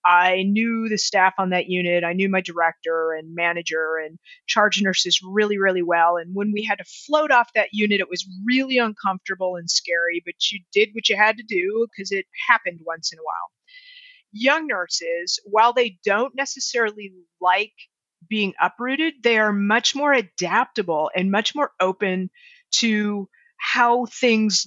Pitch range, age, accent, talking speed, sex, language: 185-235 Hz, 30-49, American, 170 wpm, female, English